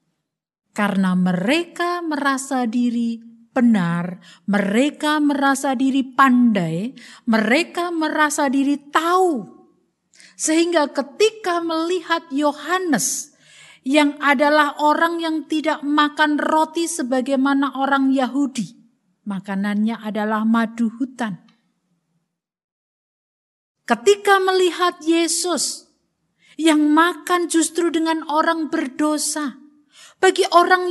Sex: female